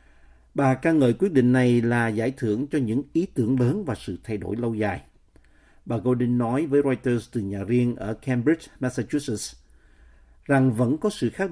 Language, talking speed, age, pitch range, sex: Vietnamese, 190 wpm, 50-69, 105-135 Hz, male